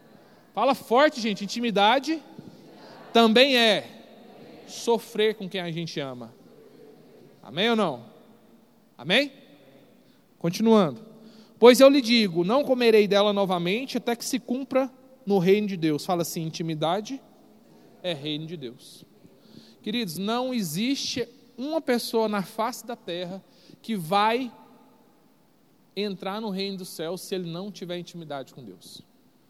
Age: 40-59